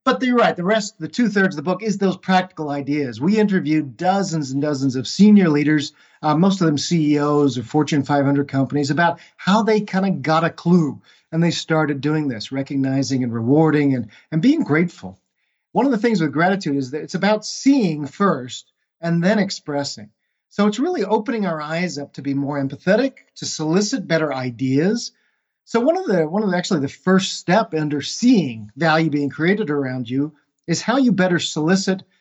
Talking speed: 195 wpm